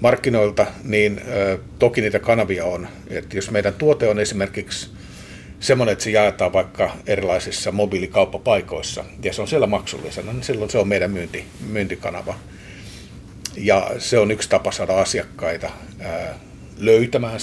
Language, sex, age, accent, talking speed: English, male, 50-69, Finnish, 140 wpm